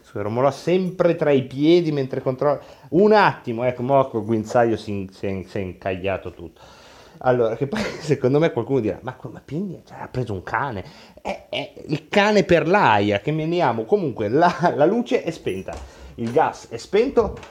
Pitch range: 105-160 Hz